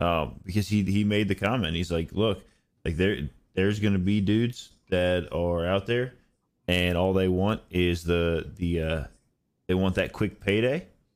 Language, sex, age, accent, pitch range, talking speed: English, male, 20-39, American, 90-115 Hz, 185 wpm